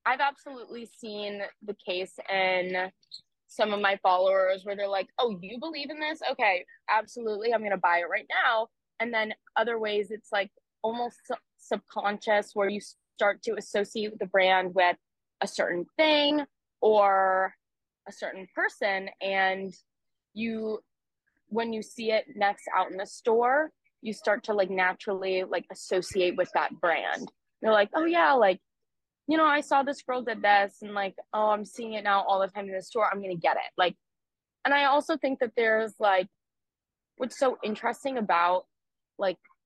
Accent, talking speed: American, 175 wpm